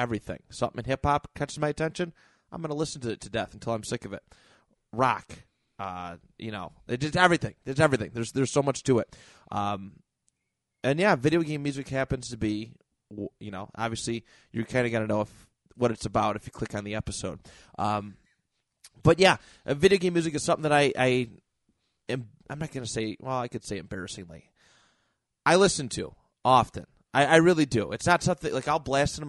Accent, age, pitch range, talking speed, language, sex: American, 30-49, 110-140 Hz, 205 wpm, English, male